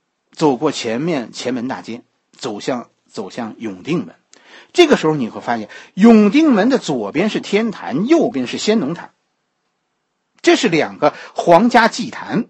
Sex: male